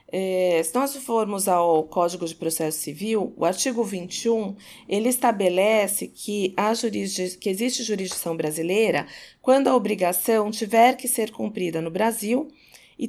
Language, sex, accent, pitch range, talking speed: Portuguese, female, Brazilian, 185-245 Hz, 140 wpm